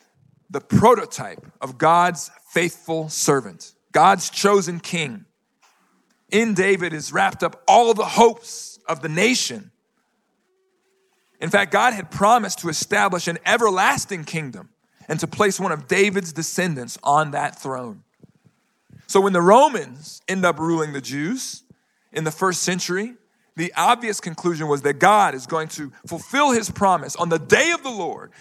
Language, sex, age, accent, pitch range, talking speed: English, male, 40-59, American, 150-205 Hz, 150 wpm